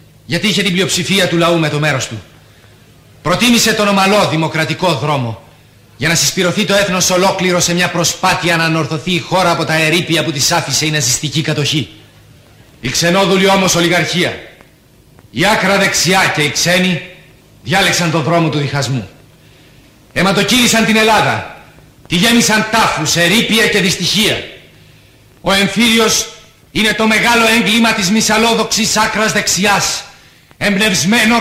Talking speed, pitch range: 140 wpm, 160-220 Hz